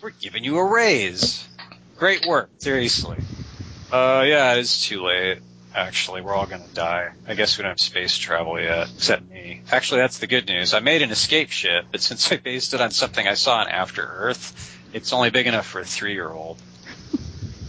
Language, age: English, 40-59